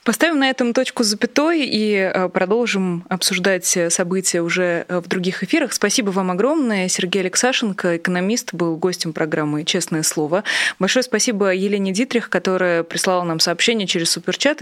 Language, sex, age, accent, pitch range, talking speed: Russian, female, 20-39, native, 175-215 Hz, 140 wpm